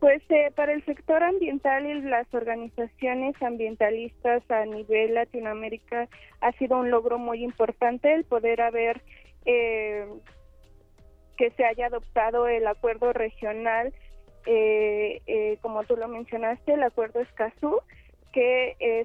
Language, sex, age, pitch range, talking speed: Spanish, female, 20-39, 225-270 Hz, 130 wpm